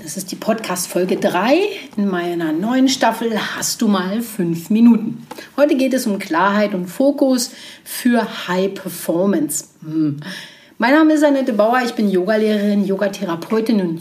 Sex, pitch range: female, 185-255 Hz